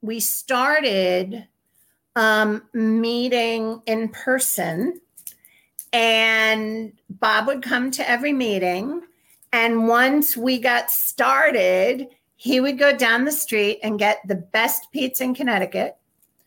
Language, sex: English, female